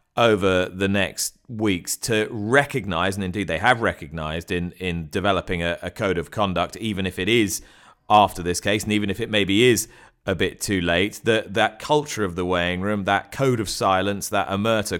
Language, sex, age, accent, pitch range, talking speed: English, male, 30-49, British, 90-110 Hz, 195 wpm